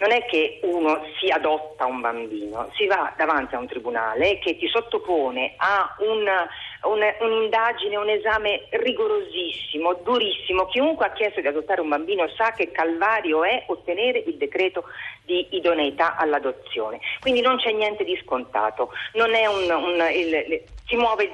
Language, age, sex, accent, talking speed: Italian, 40-59, female, native, 150 wpm